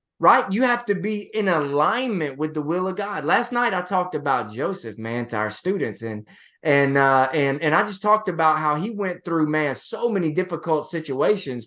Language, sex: English, male